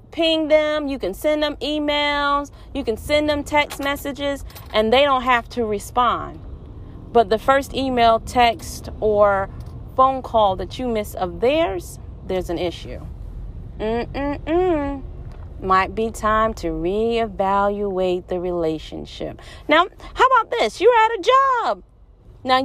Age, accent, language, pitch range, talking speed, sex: 30-49, American, English, 220-300 Hz, 145 wpm, female